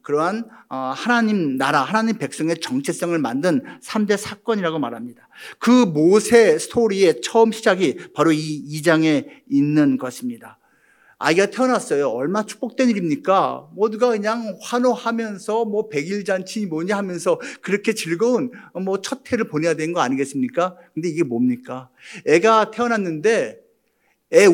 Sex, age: male, 50-69